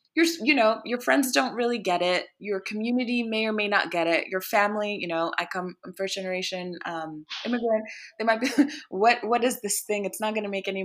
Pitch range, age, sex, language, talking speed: 180-225 Hz, 20-39, female, English, 230 wpm